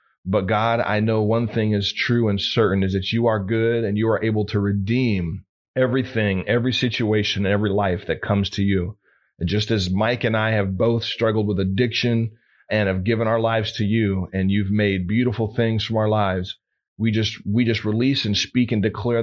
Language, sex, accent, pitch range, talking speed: English, male, American, 100-115 Hz, 205 wpm